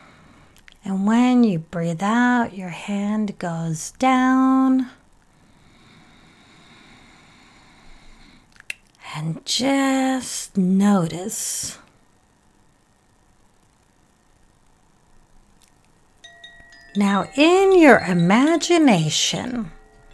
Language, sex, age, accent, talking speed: English, female, 40-59, American, 50 wpm